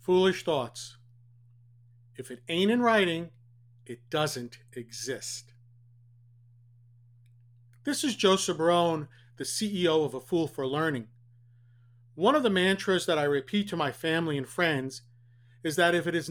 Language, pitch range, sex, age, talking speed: English, 120-170 Hz, male, 40-59, 140 wpm